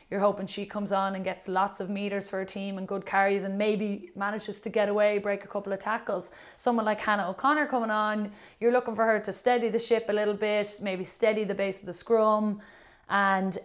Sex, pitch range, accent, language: female, 195-225 Hz, Irish, English